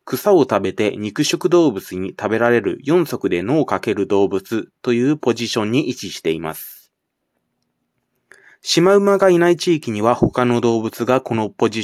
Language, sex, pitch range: Japanese, male, 110-145 Hz